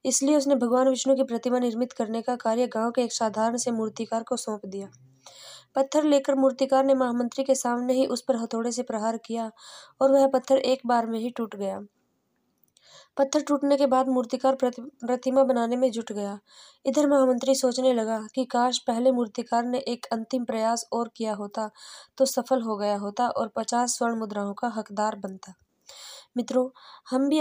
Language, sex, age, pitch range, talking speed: Hindi, female, 20-39, 230-265 Hz, 180 wpm